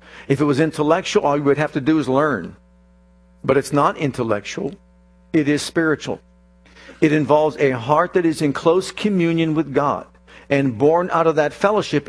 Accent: American